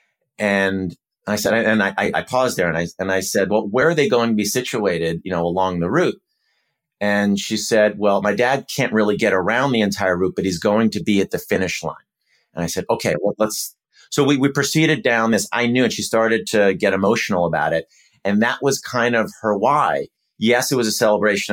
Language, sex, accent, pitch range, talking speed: French, male, American, 95-115 Hz, 230 wpm